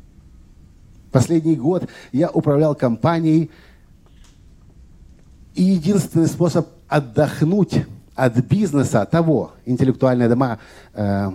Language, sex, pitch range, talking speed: Russian, male, 105-155 Hz, 80 wpm